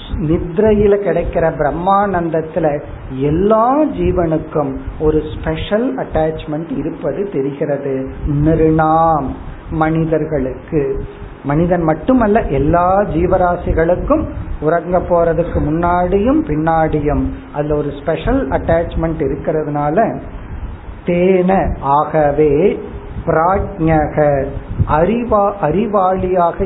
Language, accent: Tamil, native